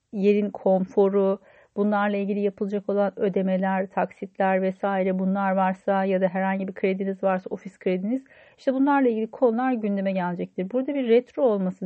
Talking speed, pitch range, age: 145 wpm, 190-230 Hz, 40-59